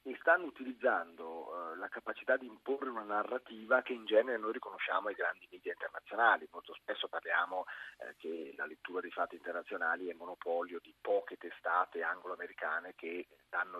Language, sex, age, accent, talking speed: Italian, male, 30-49, native, 160 wpm